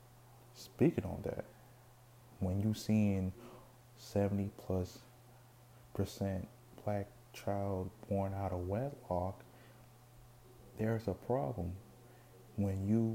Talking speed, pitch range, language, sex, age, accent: 95 wpm, 95-120 Hz, English, male, 20-39, American